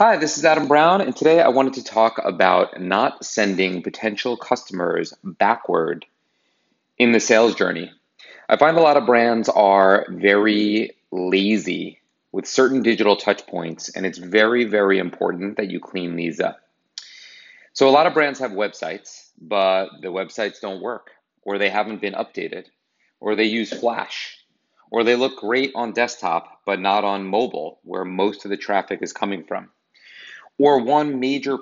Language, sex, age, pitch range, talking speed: English, male, 30-49, 95-120 Hz, 165 wpm